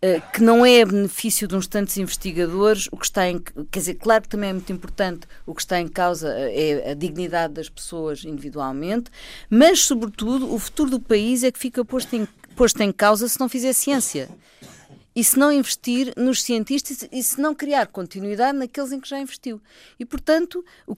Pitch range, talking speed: 160-230 Hz, 195 wpm